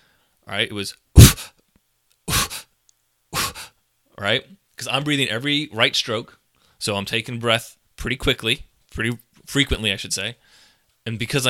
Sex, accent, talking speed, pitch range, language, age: male, American, 130 wpm, 100-125 Hz, English, 30-49